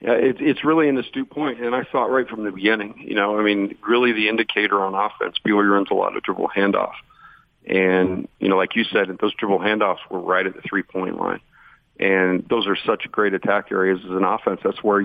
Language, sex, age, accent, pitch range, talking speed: English, male, 40-59, American, 100-115 Hz, 230 wpm